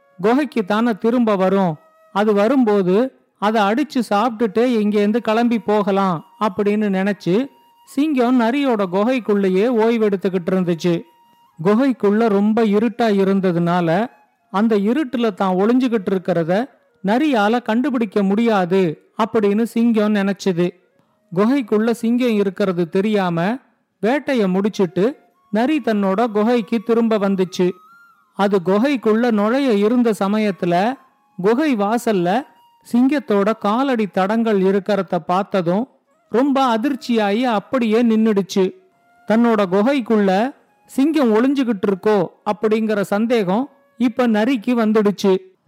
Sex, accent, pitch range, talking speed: male, native, 195-240 Hz, 90 wpm